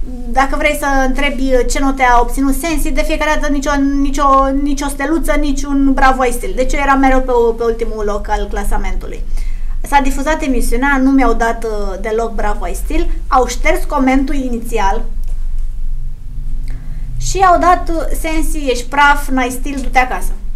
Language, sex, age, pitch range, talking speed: Romanian, female, 20-39, 220-285 Hz, 160 wpm